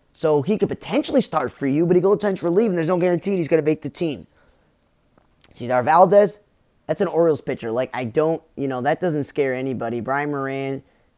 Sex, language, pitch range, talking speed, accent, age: male, English, 130-165 Hz, 210 wpm, American, 20-39